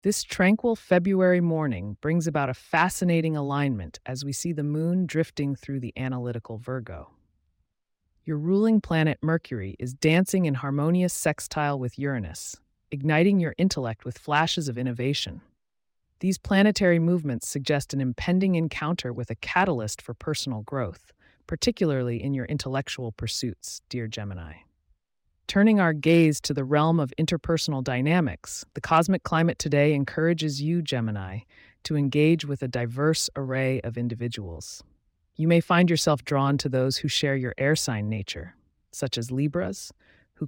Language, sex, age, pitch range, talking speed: English, female, 30-49, 115-160 Hz, 145 wpm